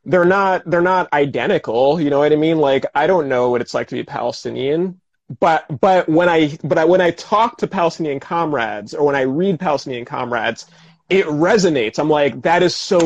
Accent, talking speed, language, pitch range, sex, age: American, 205 wpm, English, 140-180 Hz, male, 30-49